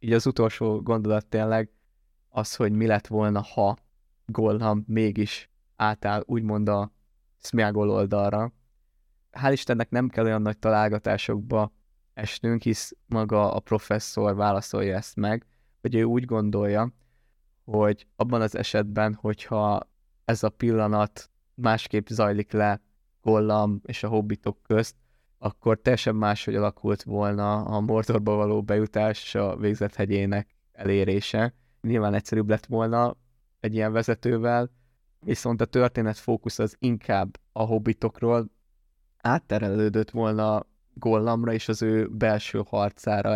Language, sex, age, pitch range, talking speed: Hungarian, male, 20-39, 105-115 Hz, 125 wpm